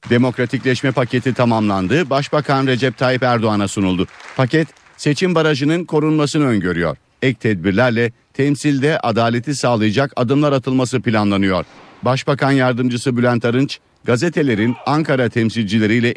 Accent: native